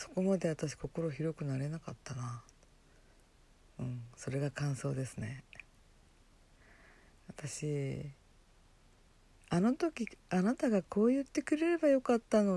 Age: 50-69